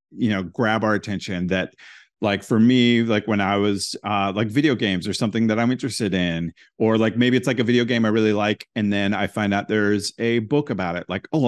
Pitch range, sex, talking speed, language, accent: 100-125 Hz, male, 240 wpm, English, American